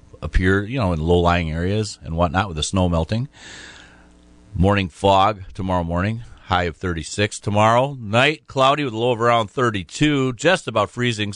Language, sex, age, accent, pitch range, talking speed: English, male, 40-59, American, 80-105 Hz, 165 wpm